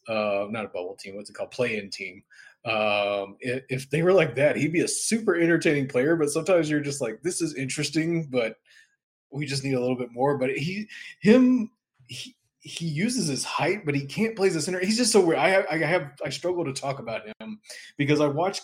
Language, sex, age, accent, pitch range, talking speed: English, male, 20-39, American, 120-165 Hz, 225 wpm